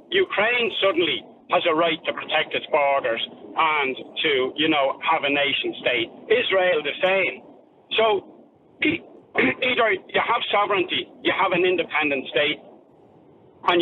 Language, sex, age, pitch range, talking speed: English, male, 60-79, 160-220 Hz, 135 wpm